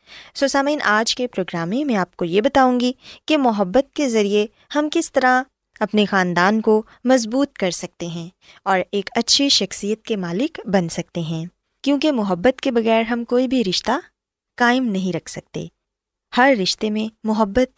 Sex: female